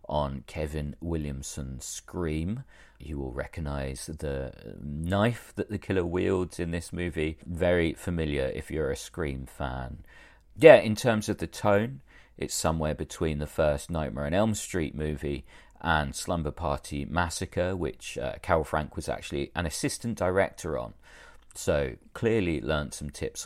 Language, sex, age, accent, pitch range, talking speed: English, male, 40-59, British, 75-90 Hz, 150 wpm